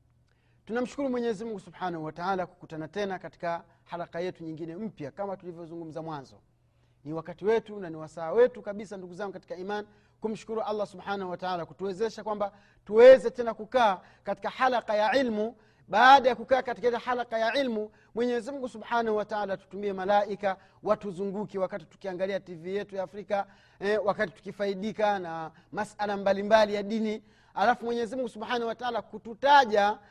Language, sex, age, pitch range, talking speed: Swahili, male, 40-59, 195-240 Hz, 150 wpm